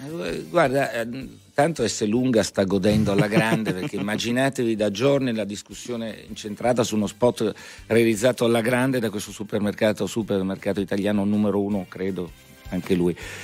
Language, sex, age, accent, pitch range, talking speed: Italian, male, 60-79, native, 100-160 Hz, 140 wpm